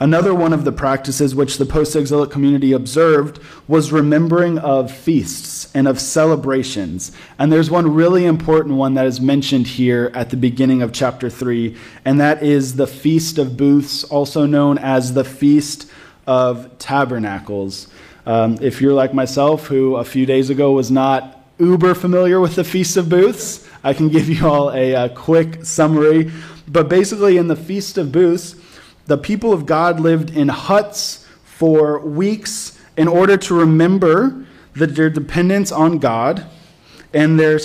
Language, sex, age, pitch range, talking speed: English, male, 20-39, 140-175 Hz, 160 wpm